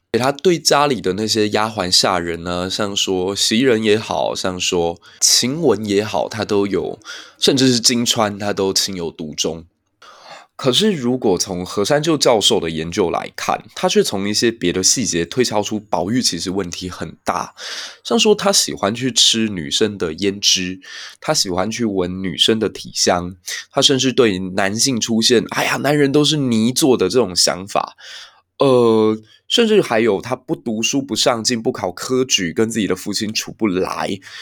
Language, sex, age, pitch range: Chinese, male, 20-39, 95-135 Hz